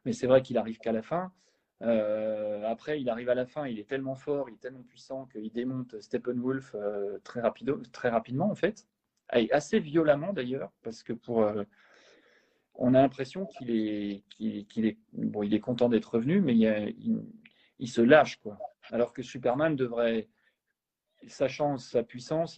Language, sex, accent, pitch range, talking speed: French, male, French, 115-145 Hz, 175 wpm